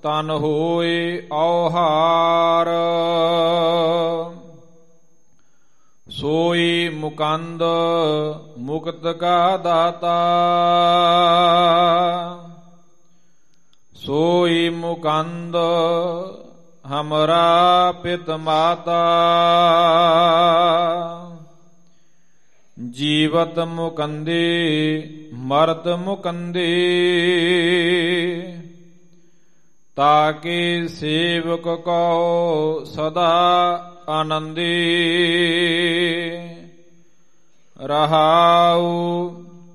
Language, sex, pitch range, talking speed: Punjabi, male, 165-175 Hz, 35 wpm